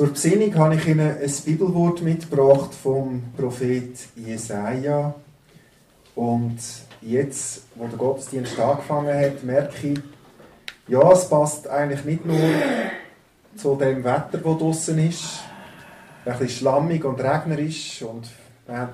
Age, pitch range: 30-49, 120-145 Hz